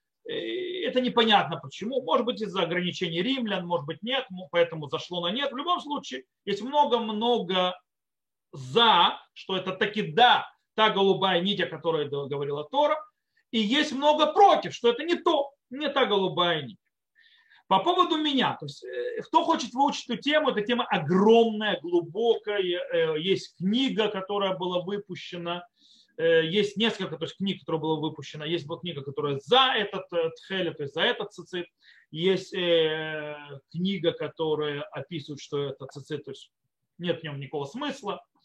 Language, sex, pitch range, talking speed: Russian, male, 165-250 Hz, 150 wpm